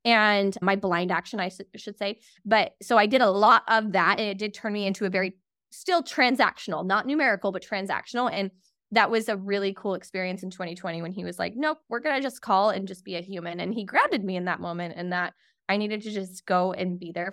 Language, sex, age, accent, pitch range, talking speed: English, female, 20-39, American, 185-230 Hz, 240 wpm